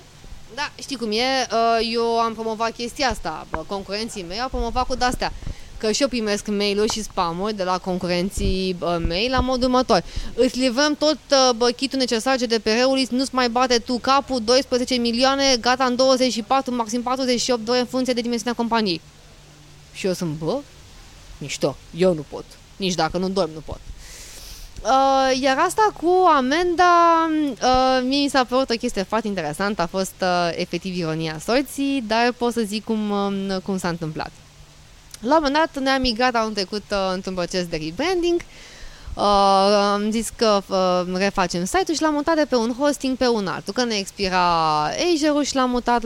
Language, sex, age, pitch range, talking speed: Romanian, female, 20-39, 195-270 Hz, 175 wpm